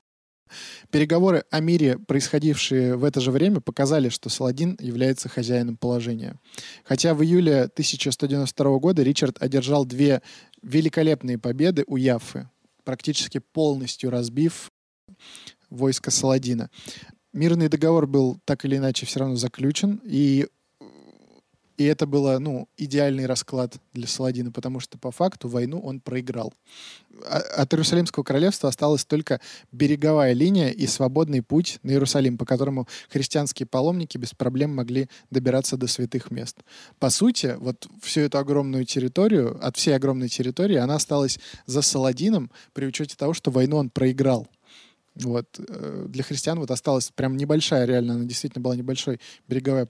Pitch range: 125-150 Hz